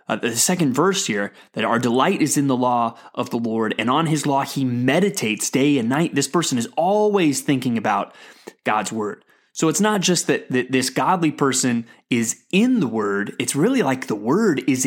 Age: 30-49